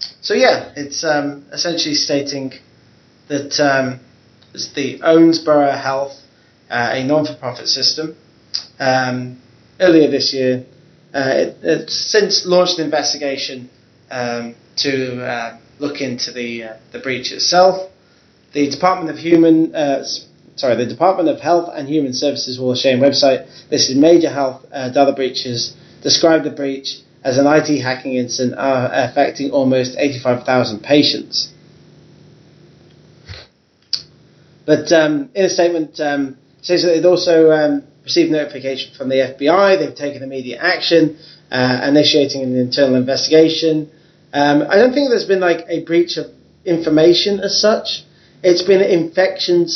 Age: 30-49